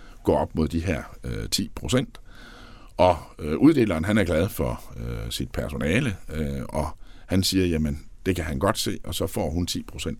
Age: 60-79